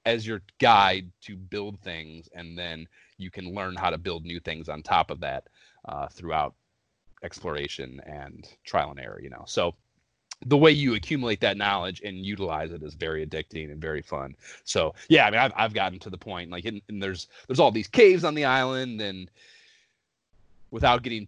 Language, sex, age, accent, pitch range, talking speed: English, male, 30-49, American, 90-110 Hz, 190 wpm